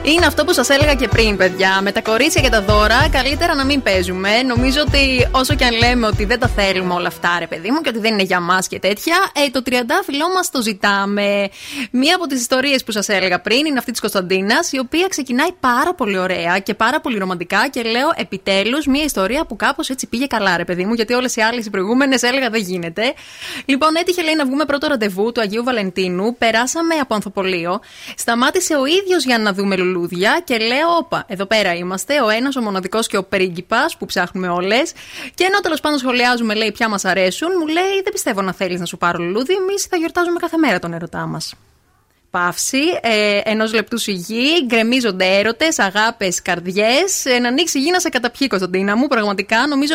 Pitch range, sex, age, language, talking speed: 195-285 Hz, female, 20-39, Greek, 205 wpm